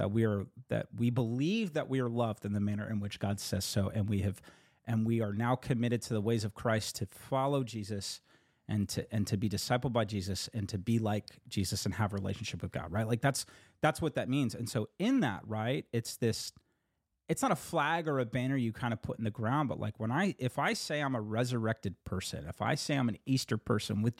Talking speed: 250 wpm